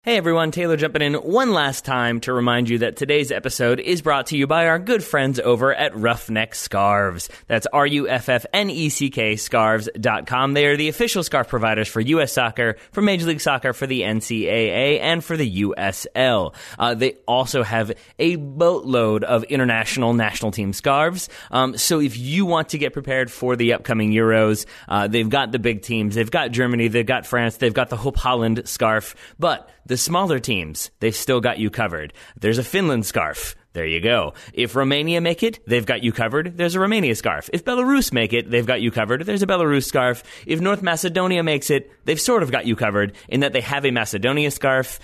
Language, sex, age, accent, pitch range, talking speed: English, male, 30-49, American, 115-145 Hz, 200 wpm